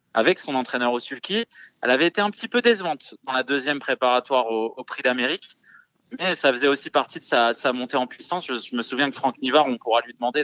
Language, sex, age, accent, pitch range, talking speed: French, male, 20-39, French, 125-170 Hz, 240 wpm